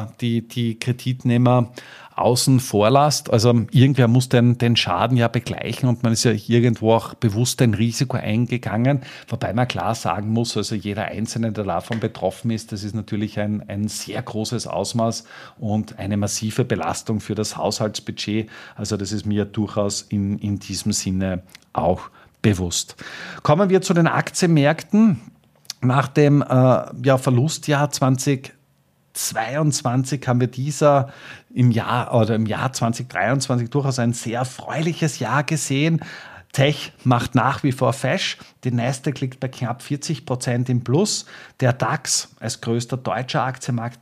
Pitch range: 110-135 Hz